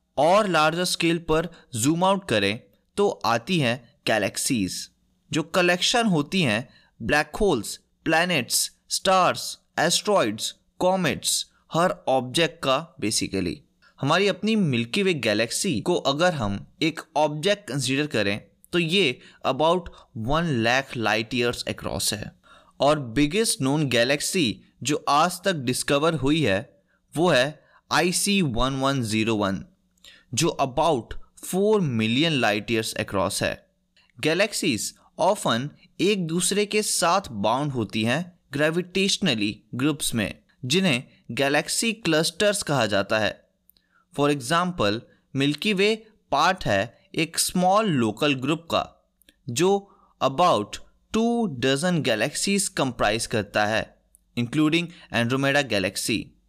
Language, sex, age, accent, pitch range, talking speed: Hindi, male, 20-39, native, 120-185 Hz, 110 wpm